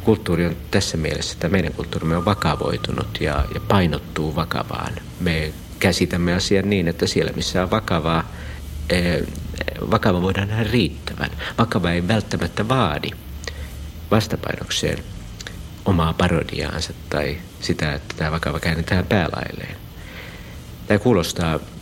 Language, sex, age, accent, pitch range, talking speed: Finnish, male, 60-79, native, 80-95 Hz, 115 wpm